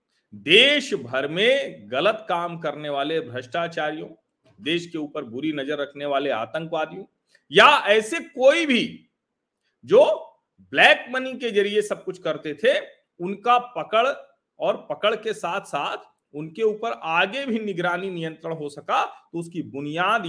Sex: male